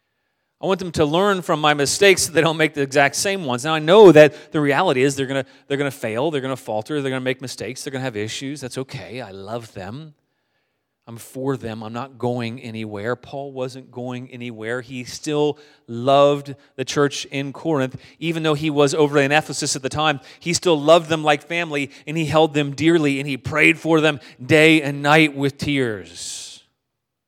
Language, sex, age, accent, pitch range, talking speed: English, male, 30-49, American, 110-145 Hz, 210 wpm